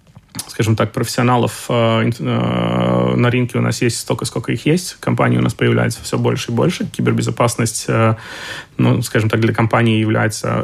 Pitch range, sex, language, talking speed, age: 115-130 Hz, male, Russian, 170 wpm, 20-39